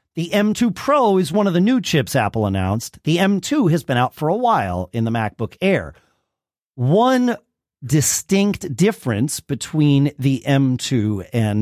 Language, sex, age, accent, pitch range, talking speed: English, male, 40-59, American, 105-165 Hz, 155 wpm